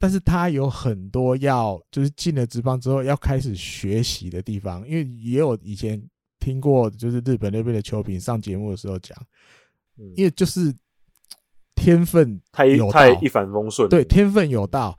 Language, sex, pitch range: Chinese, male, 110-155 Hz